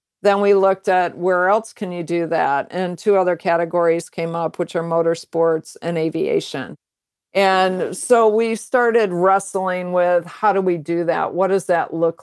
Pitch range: 170-195 Hz